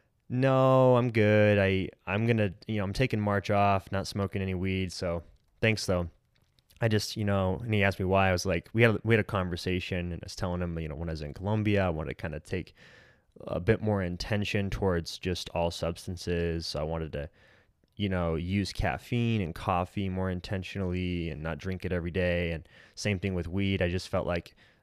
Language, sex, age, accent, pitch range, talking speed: English, male, 20-39, American, 85-105 Hz, 220 wpm